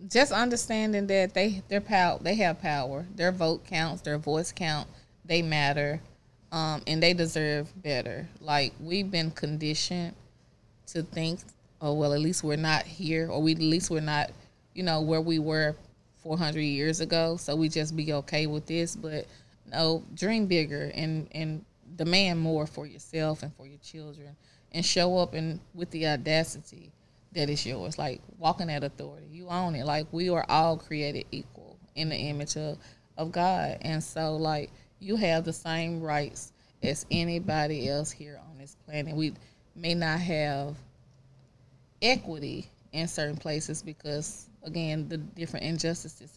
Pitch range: 150-175 Hz